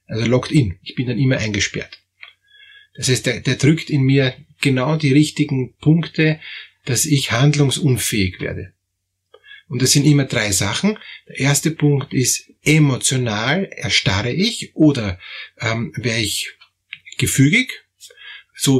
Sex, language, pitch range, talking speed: male, German, 120-155 Hz, 130 wpm